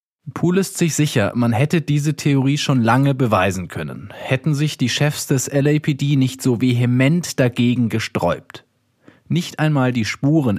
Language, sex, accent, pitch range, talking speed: German, male, German, 110-140 Hz, 155 wpm